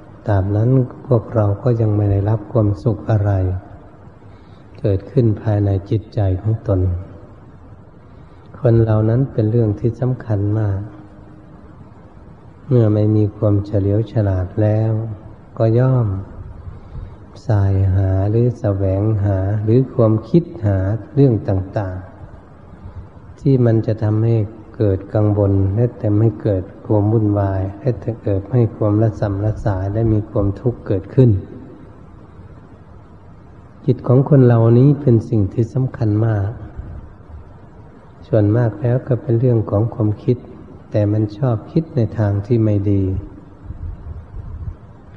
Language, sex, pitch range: Thai, male, 100-115 Hz